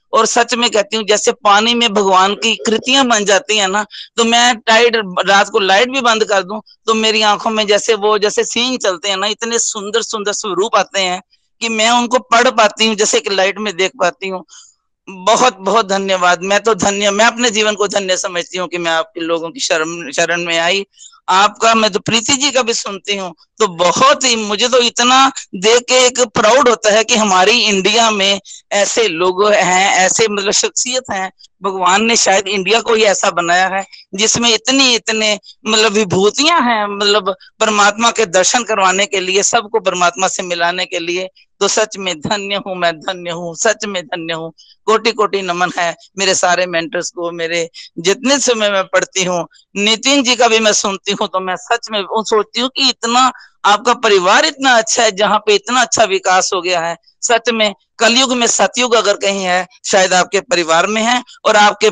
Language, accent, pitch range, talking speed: Hindi, native, 185-230 Hz, 200 wpm